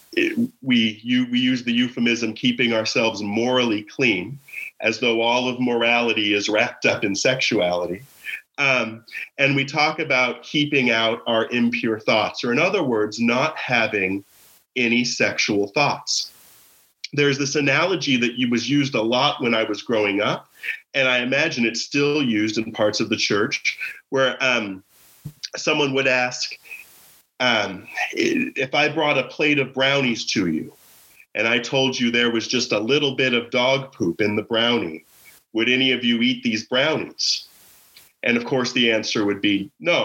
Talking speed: 160 wpm